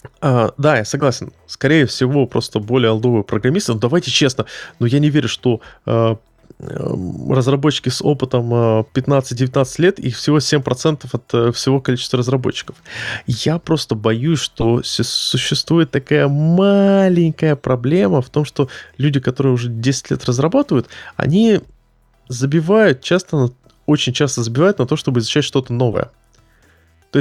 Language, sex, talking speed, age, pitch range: Russian, male, 145 wpm, 20-39, 125-155 Hz